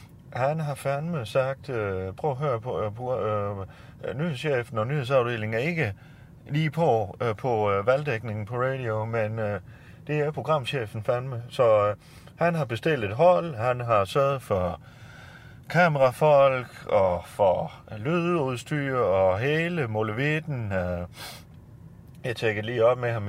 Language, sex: Danish, male